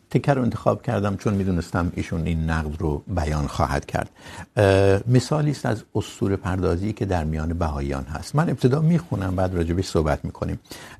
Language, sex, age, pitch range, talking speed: Urdu, male, 60-79, 85-120 Hz, 160 wpm